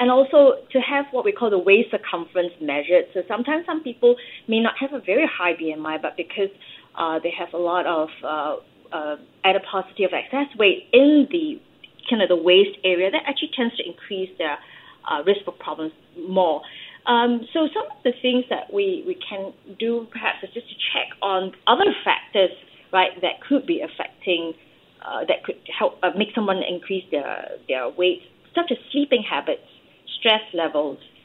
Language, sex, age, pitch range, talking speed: English, female, 30-49, 180-275 Hz, 180 wpm